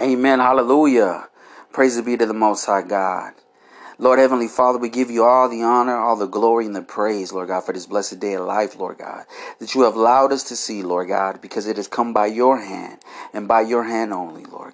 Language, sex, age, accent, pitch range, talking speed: English, male, 40-59, American, 110-135 Hz, 230 wpm